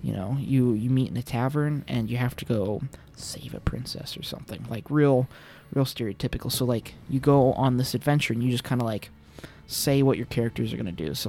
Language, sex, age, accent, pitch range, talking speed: English, male, 20-39, American, 115-130 Hz, 235 wpm